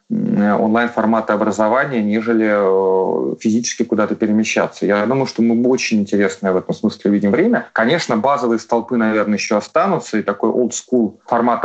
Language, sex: Russian, male